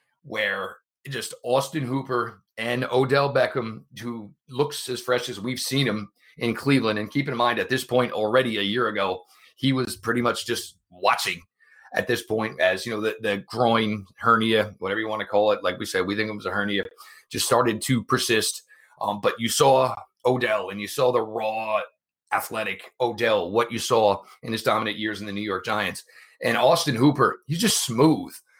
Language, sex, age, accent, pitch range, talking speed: English, male, 40-59, American, 110-135 Hz, 195 wpm